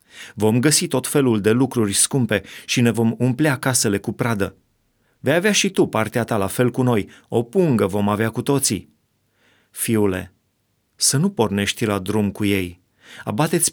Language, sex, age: Romanian, male, 30-49